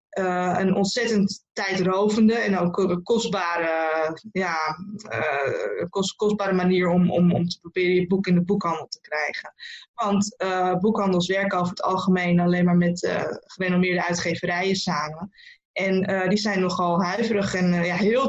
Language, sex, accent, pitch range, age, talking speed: Dutch, female, Dutch, 185-215 Hz, 20-39, 145 wpm